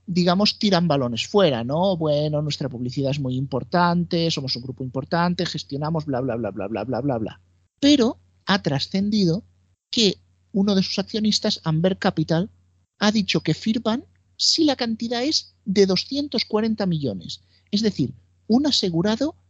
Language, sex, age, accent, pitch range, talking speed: Spanish, male, 50-69, Spanish, 145-215 Hz, 150 wpm